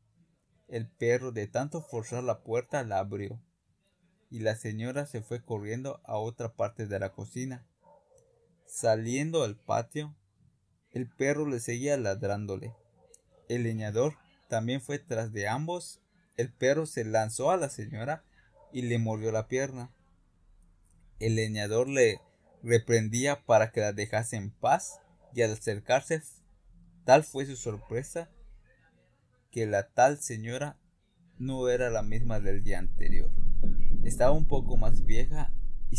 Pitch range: 105-130 Hz